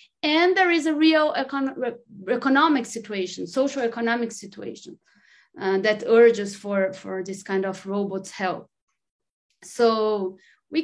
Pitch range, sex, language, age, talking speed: 195-235 Hz, female, English, 30-49, 135 wpm